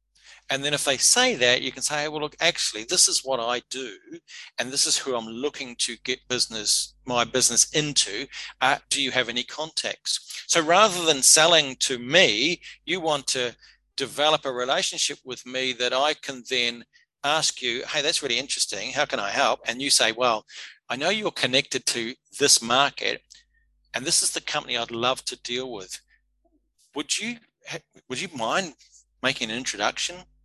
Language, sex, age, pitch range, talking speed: English, male, 40-59, 120-160 Hz, 185 wpm